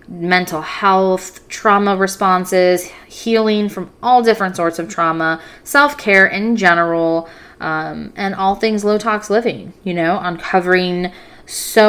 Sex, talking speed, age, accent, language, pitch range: female, 130 wpm, 20-39, American, English, 170-210 Hz